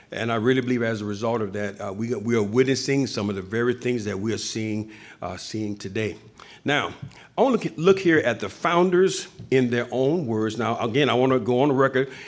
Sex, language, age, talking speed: male, English, 50-69, 235 wpm